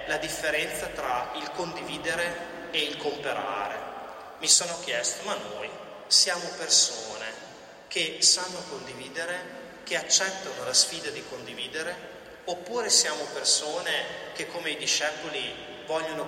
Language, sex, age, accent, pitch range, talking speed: Italian, male, 30-49, native, 145-175 Hz, 120 wpm